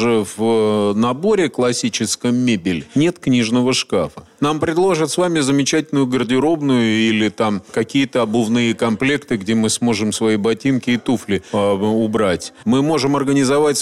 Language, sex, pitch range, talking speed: Russian, male, 115-140 Hz, 125 wpm